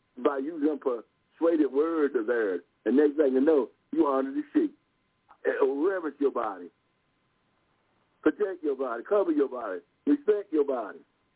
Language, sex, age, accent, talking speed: English, male, 60-79, American, 145 wpm